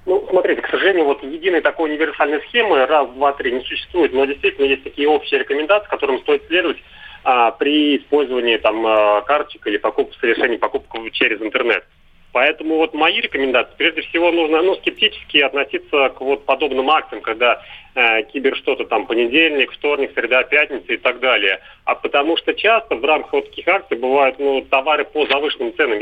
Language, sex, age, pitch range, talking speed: Russian, male, 30-49, 135-205 Hz, 175 wpm